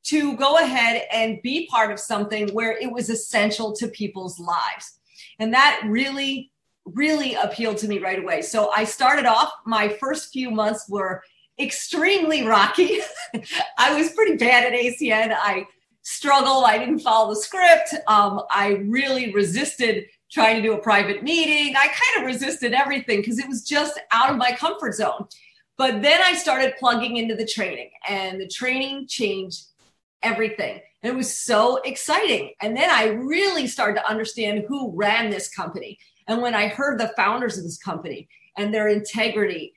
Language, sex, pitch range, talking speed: English, female, 215-285 Hz, 170 wpm